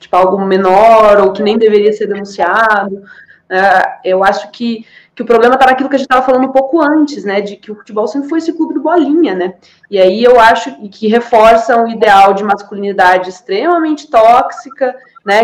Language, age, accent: Portuguese, 20-39, Brazilian